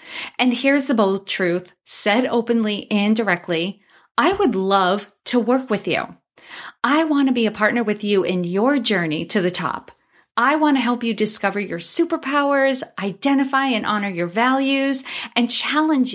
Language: English